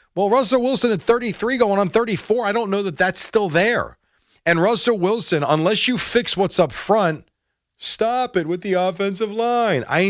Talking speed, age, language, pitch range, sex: 185 wpm, 40-59, English, 125-205 Hz, male